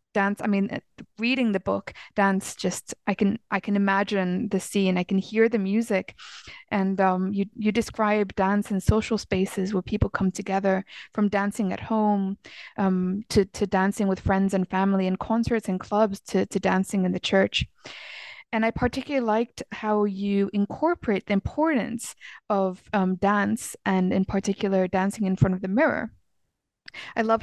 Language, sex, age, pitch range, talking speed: English, female, 20-39, 190-215 Hz, 170 wpm